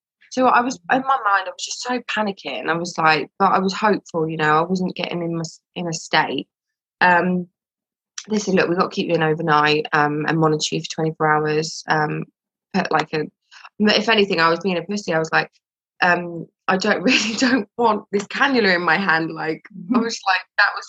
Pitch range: 165-215 Hz